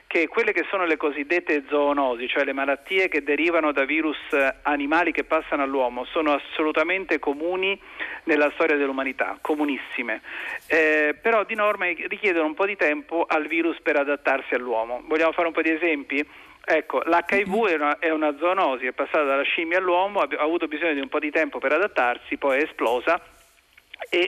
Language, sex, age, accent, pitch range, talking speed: Italian, male, 50-69, native, 145-180 Hz, 175 wpm